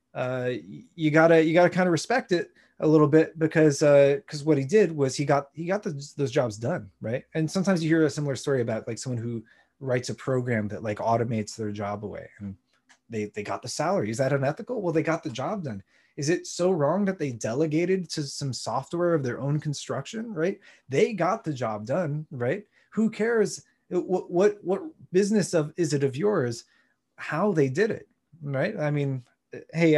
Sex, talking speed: male, 205 wpm